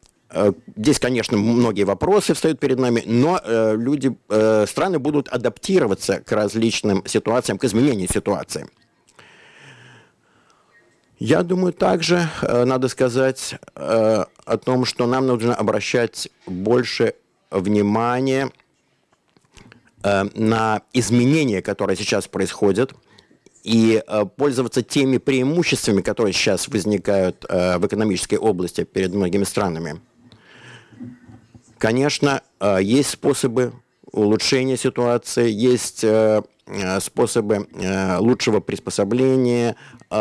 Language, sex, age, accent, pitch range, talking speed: Russian, male, 50-69, native, 105-130 Hz, 85 wpm